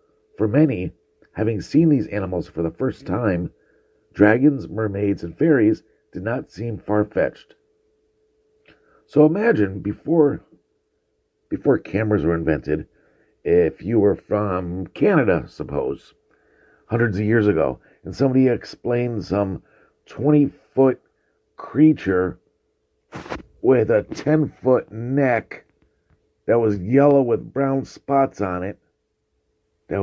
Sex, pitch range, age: male, 105-155 Hz, 50-69